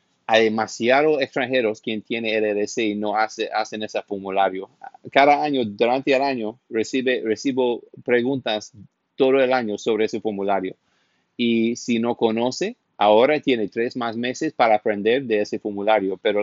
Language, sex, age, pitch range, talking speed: Spanish, male, 30-49, 105-125 Hz, 150 wpm